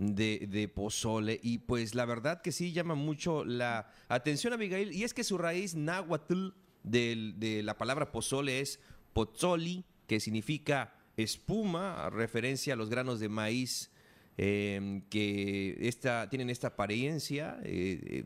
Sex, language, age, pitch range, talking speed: male, Spanish, 40-59, 110-140 Hz, 150 wpm